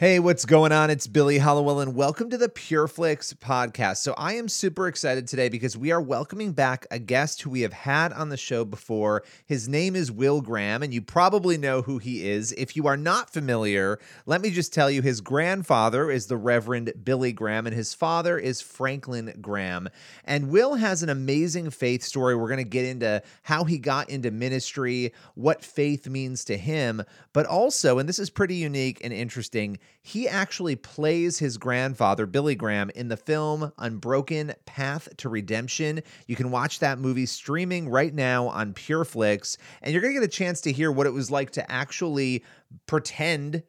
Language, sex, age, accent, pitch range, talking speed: English, male, 30-49, American, 120-155 Hz, 195 wpm